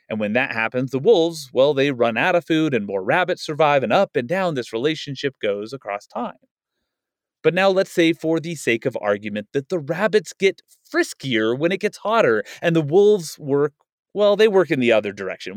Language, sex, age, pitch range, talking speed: English, male, 30-49, 125-185 Hz, 210 wpm